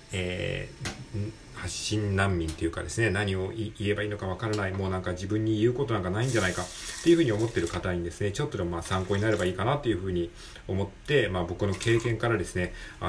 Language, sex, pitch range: Japanese, male, 85-110 Hz